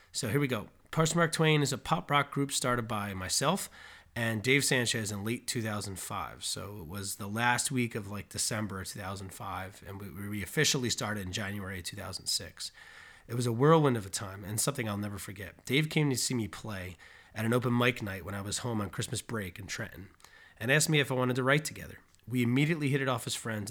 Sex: male